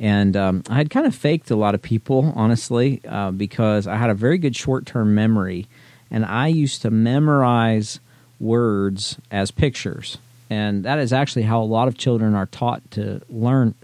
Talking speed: 180 wpm